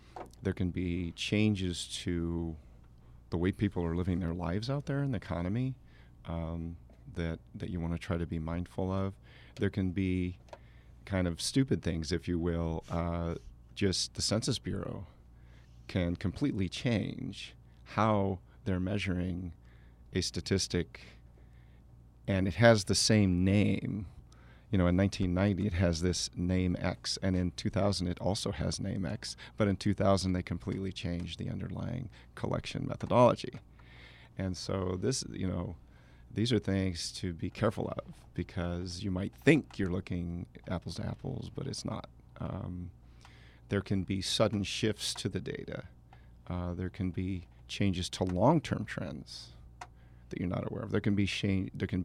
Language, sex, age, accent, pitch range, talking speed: English, male, 40-59, American, 85-100 Hz, 155 wpm